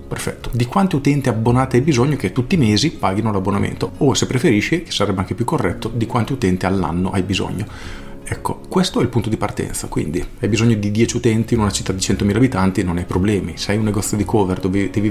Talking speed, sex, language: 230 wpm, male, Italian